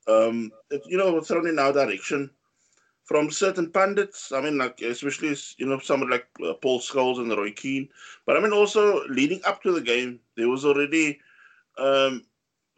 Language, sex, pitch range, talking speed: English, male, 135-220 Hz, 180 wpm